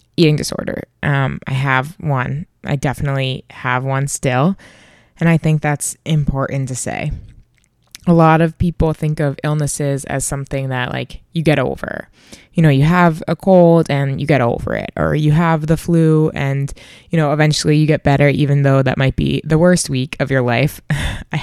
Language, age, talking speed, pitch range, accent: English, 20-39, 190 wpm, 135-165 Hz, American